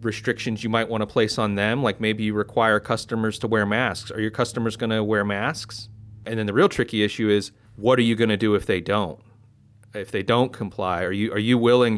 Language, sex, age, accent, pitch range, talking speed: English, male, 30-49, American, 105-125 Hz, 240 wpm